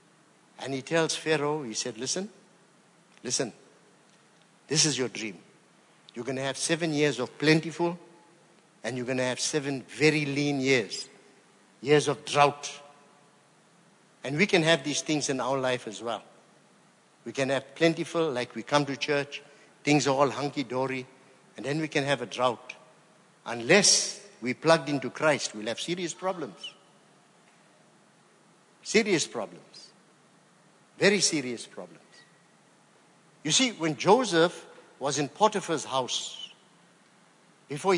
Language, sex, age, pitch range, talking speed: English, male, 60-79, 135-180 Hz, 135 wpm